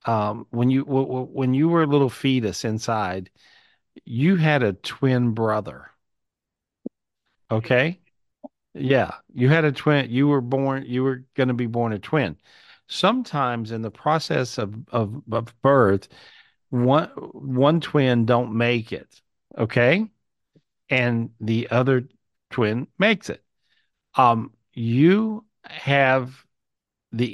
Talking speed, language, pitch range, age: 130 wpm, English, 115-140 Hz, 50-69